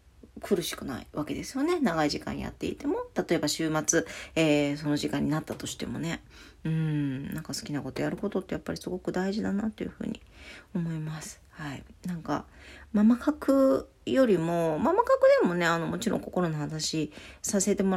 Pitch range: 155-245 Hz